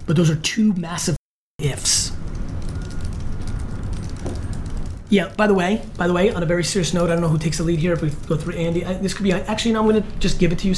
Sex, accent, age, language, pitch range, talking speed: male, American, 30-49, English, 155-200 Hz, 235 wpm